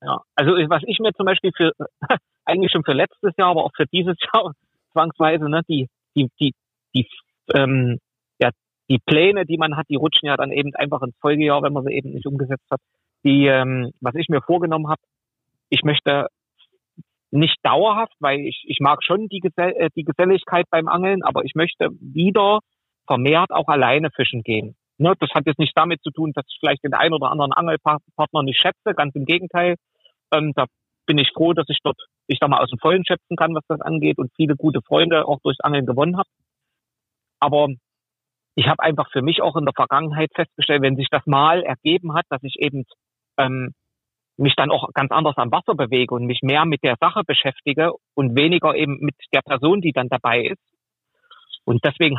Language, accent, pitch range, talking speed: German, German, 135-165 Hz, 195 wpm